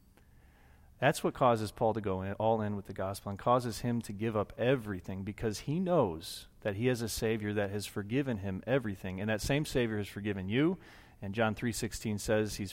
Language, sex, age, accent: English, male, 30-49, American